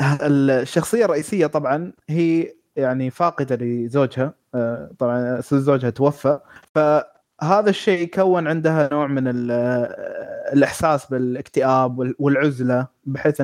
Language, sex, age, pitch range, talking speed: Arabic, male, 20-39, 130-160 Hz, 90 wpm